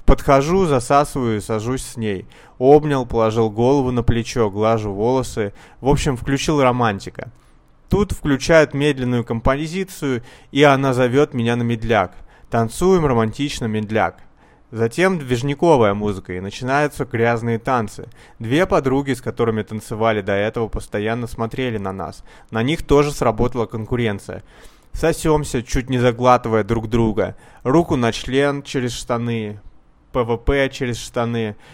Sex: male